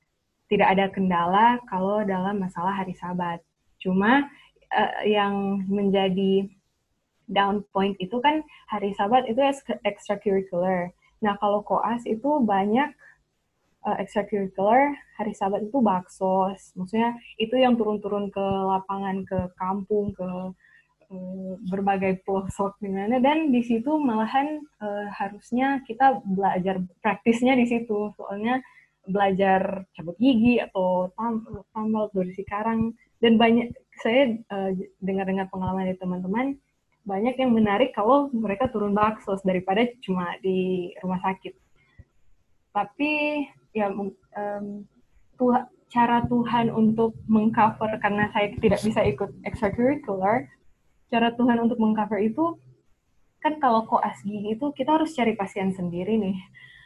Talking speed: 120 wpm